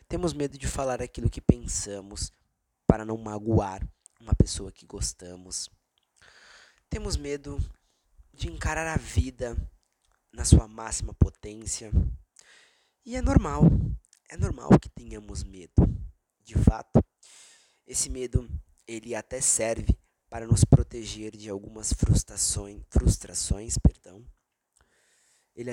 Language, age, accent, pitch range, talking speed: Portuguese, 20-39, Brazilian, 90-120 Hz, 110 wpm